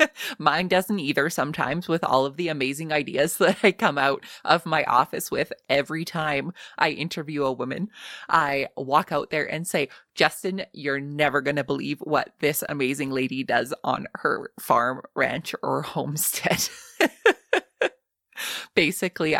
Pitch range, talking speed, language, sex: 140-175 Hz, 150 wpm, English, female